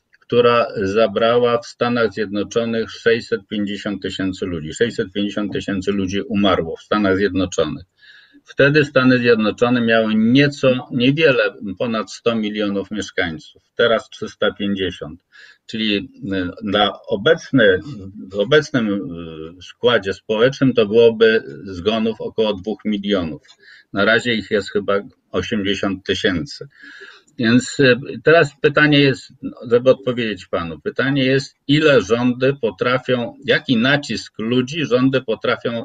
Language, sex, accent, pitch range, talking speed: Polish, male, native, 105-140 Hz, 105 wpm